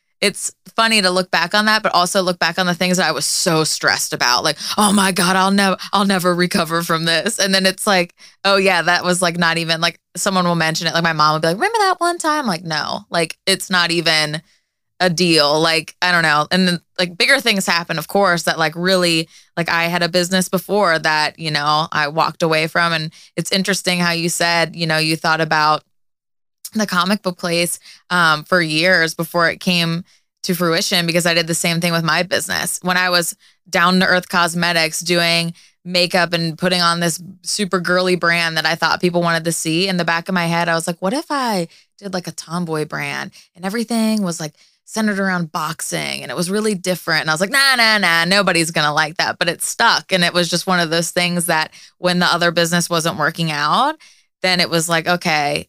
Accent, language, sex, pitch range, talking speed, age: American, English, female, 165-190 Hz, 230 wpm, 20-39